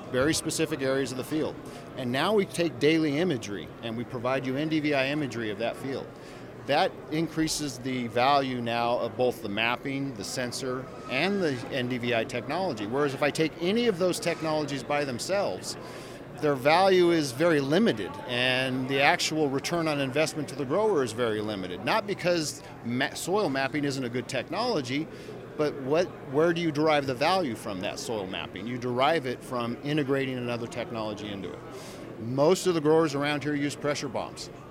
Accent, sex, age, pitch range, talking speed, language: American, male, 40-59, 120-155 Hz, 175 wpm, English